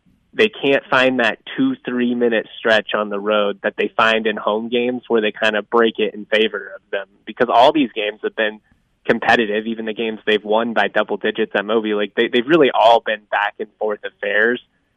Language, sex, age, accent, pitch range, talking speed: English, male, 20-39, American, 105-120 Hz, 215 wpm